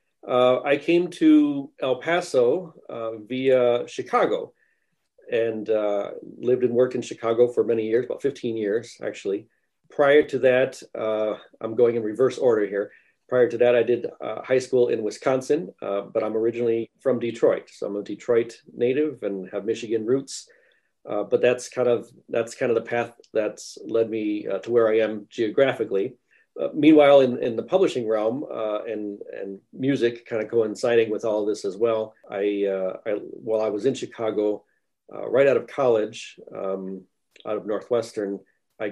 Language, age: English, 40-59